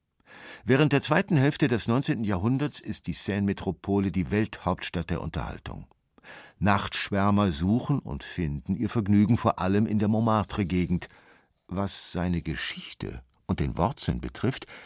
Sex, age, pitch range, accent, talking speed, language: male, 50-69, 90-115 Hz, German, 130 wpm, German